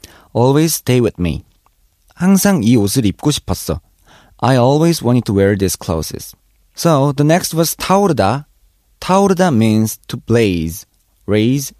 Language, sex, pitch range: Korean, male, 95-135 Hz